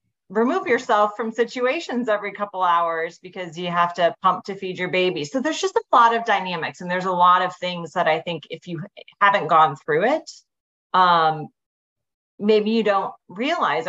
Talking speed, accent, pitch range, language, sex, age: 185 wpm, American, 165-225 Hz, English, female, 30-49